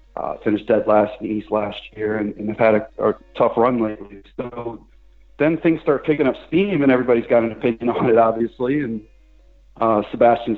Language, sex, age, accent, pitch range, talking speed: English, male, 30-49, American, 110-135 Hz, 205 wpm